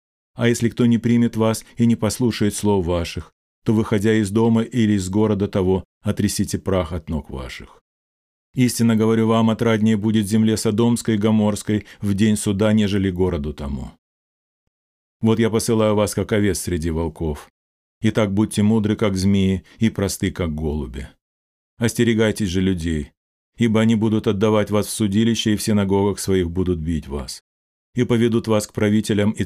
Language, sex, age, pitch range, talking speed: Russian, male, 40-59, 85-110 Hz, 160 wpm